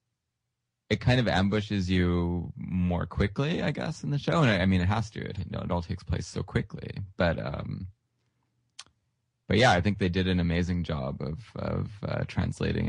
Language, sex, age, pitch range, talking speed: English, male, 20-39, 95-120 Hz, 200 wpm